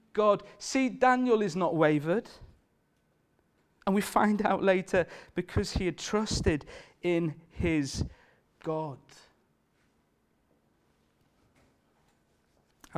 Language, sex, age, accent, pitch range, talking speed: English, male, 40-59, British, 130-175 Hz, 90 wpm